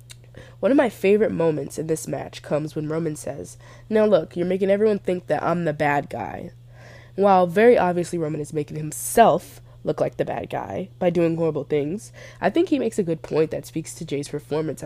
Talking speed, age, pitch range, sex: 205 wpm, 20-39, 135-170 Hz, female